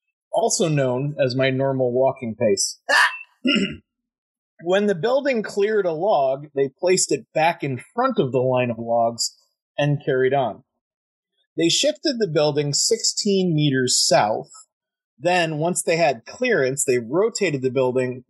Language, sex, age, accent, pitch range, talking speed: English, male, 30-49, American, 135-200 Hz, 140 wpm